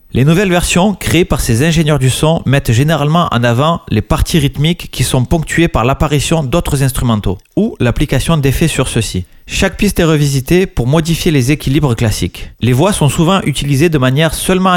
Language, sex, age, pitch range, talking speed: French, male, 40-59, 125-165 Hz, 185 wpm